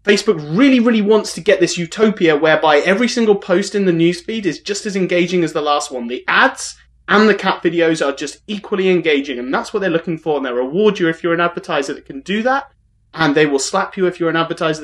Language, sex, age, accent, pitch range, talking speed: English, male, 30-49, British, 140-180 Hz, 245 wpm